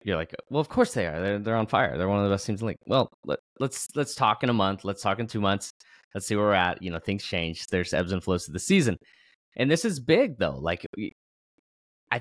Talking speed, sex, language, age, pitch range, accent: 280 wpm, male, English, 20-39, 90-130 Hz, American